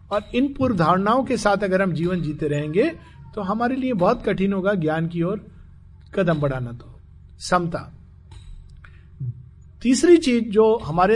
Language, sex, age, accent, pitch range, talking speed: Hindi, male, 50-69, native, 135-210 Hz, 150 wpm